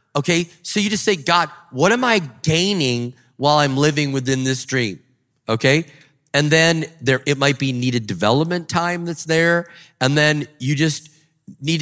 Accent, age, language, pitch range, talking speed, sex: American, 30-49, English, 120-155 Hz, 170 wpm, male